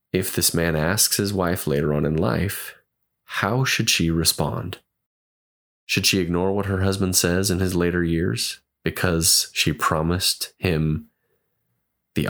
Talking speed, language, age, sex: 145 wpm, English, 20-39, male